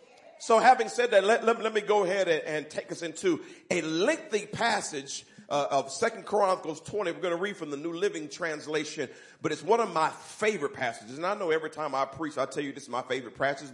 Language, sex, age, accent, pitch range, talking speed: English, male, 40-59, American, 140-210 Hz, 235 wpm